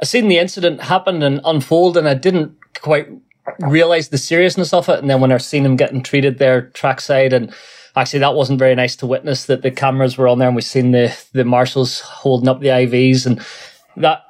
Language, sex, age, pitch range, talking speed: English, male, 20-39, 130-145 Hz, 220 wpm